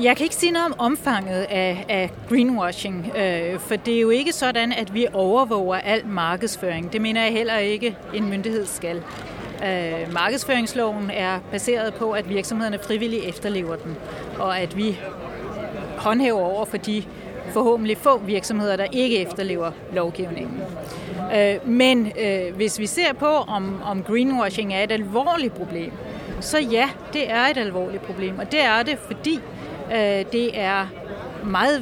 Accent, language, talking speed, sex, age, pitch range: native, Danish, 145 wpm, female, 40-59, 195-245 Hz